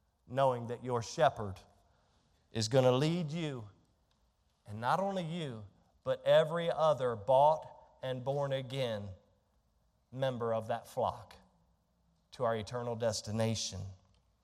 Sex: male